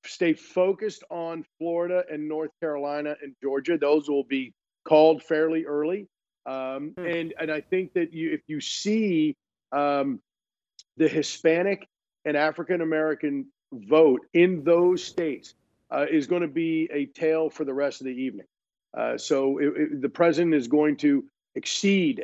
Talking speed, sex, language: 145 wpm, male, English